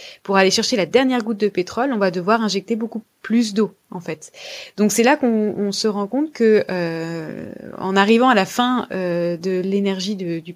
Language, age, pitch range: French, 20-39, 180-230 Hz